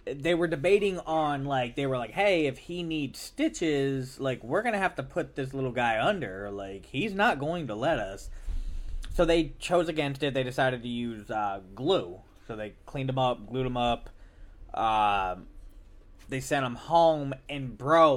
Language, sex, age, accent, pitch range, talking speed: English, male, 20-39, American, 110-150 Hz, 185 wpm